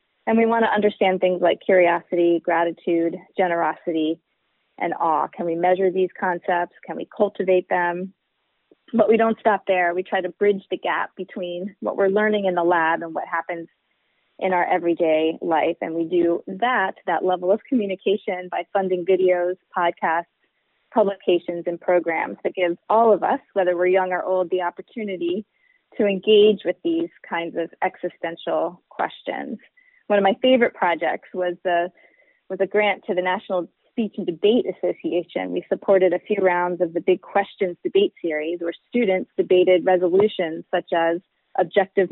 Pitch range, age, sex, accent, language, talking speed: 175-200 Hz, 30-49, female, American, English, 165 wpm